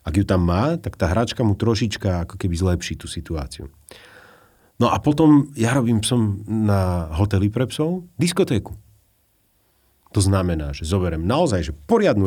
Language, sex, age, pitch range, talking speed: Slovak, male, 40-59, 85-115 Hz, 150 wpm